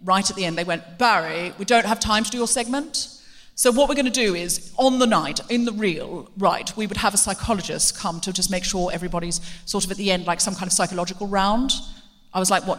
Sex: female